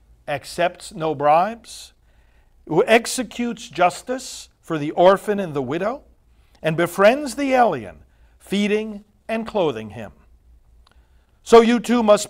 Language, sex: English, male